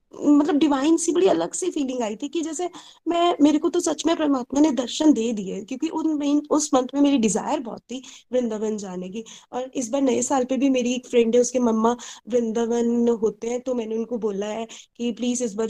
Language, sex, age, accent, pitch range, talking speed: Hindi, female, 20-39, native, 220-255 Hz, 60 wpm